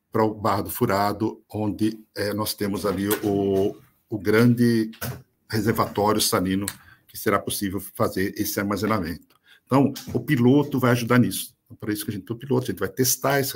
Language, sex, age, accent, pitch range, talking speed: Portuguese, male, 60-79, Brazilian, 95-115 Hz, 180 wpm